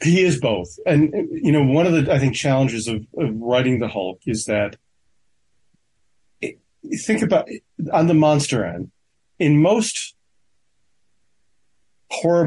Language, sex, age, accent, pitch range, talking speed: English, male, 40-59, American, 115-145 Hz, 135 wpm